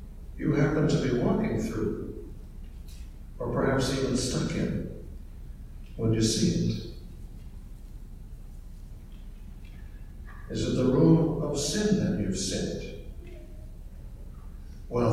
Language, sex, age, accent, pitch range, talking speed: English, male, 60-79, American, 95-140 Hz, 95 wpm